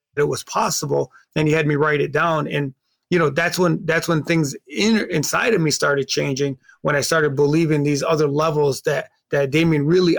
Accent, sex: American, male